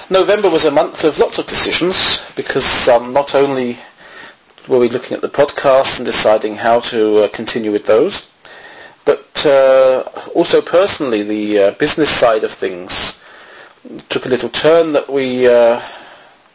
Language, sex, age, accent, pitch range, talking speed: English, male, 40-59, British, 120-150 Hz, 160 wpm